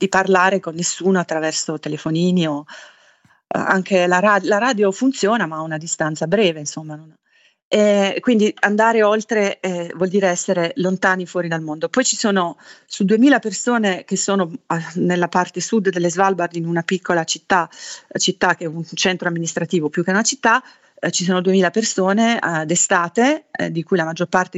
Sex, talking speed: female, 175 wpm